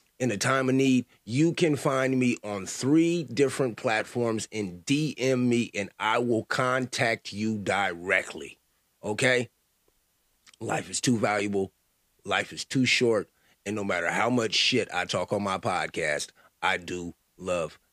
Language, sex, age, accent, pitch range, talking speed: English, male, 30-49, American, 95-125 Hz, 150 wpm